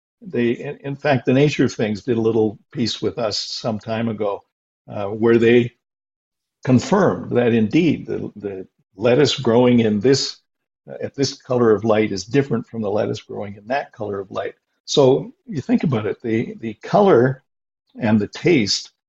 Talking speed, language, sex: 175 wpm, English, male